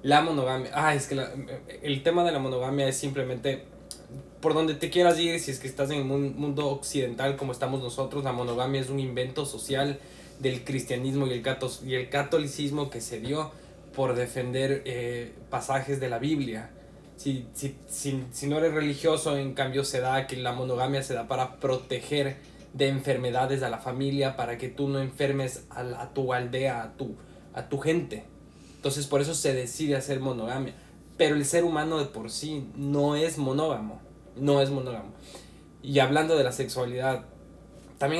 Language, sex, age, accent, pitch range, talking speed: Spanish, male, 20-39, Mexican, 130-145 Hz, 175 wpm